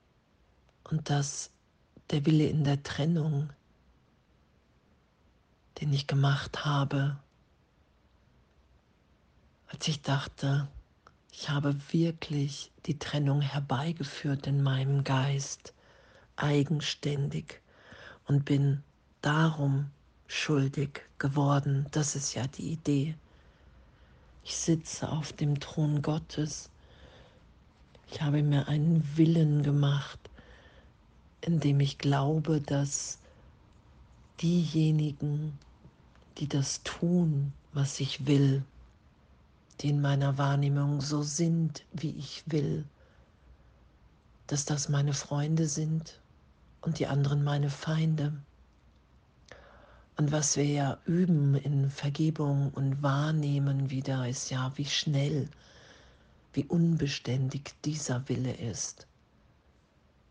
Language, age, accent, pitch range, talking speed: German, 50-69, German, 135-150 Hz, 95 wpm